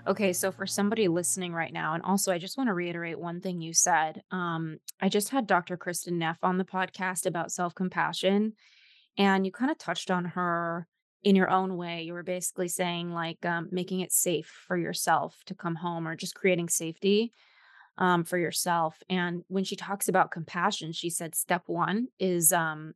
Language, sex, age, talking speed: English, female, 20-39, 195 wpm